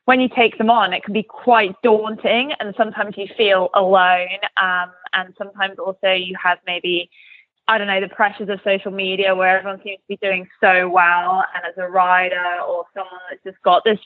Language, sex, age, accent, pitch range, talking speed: English, female, 20-39, British, 180-210 Hz, 205 wpm